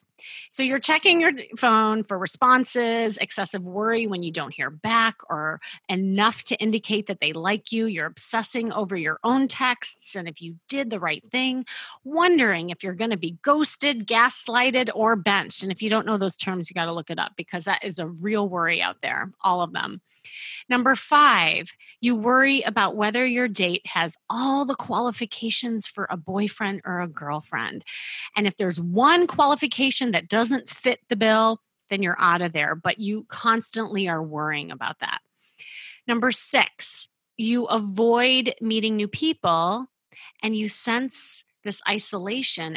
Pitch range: 175-235 Hz